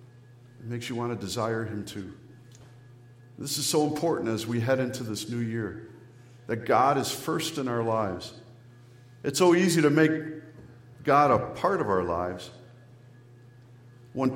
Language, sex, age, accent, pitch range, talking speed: English, male, 50-69, American, 115-130 Hz, 155 wpm